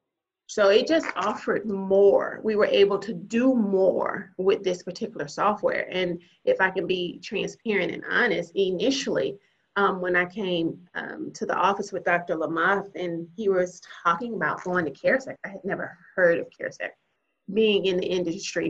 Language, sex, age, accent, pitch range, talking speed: English, female, 30-49, American, 185-260 Hz, 170 wpm